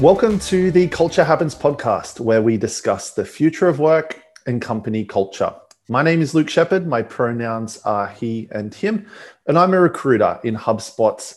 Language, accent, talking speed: English, Australian, 175 wpm